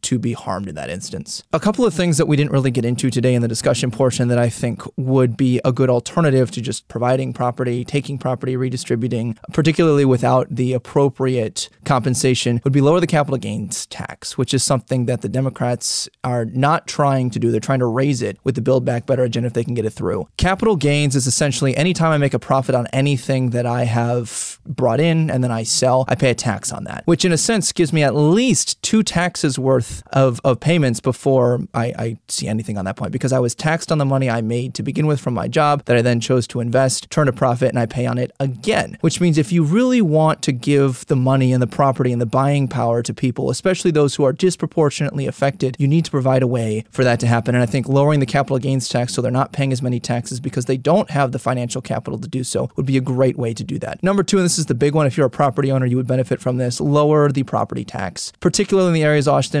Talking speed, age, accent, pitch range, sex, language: 250 wpm, 20-39, American, 125-145 Hz, male, English